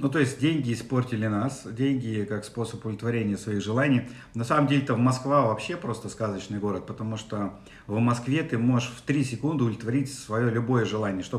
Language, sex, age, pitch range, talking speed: Russian, male, 50-69, 110-135 Hz, 180 wpm